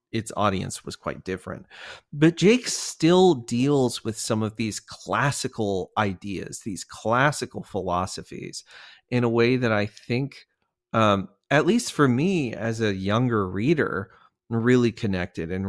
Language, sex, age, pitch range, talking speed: English, male, 30-49, 110-145 Hz, 140 wpm